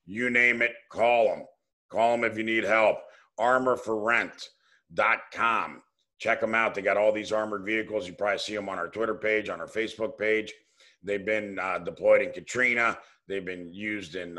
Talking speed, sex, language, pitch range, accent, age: 180 wpm, male, English, 100-120 Hz, American, 50-69